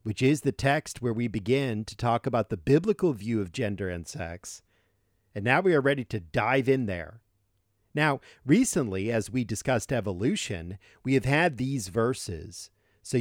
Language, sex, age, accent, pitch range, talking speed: English, male, 50-69, American, 100-130 Hz, 175 wpm